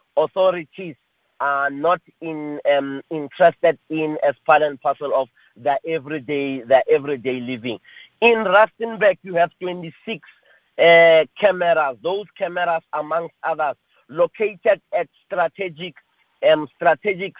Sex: male